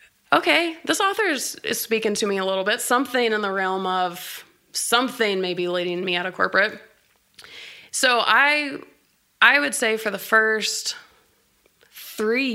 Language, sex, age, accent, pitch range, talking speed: English, female, 20-39, American, 195-235 Hz, 155 wpm